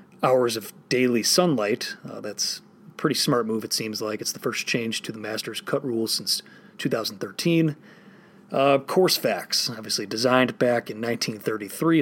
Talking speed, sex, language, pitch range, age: 160 wpm, male, English, 115-145 Hz, 30-49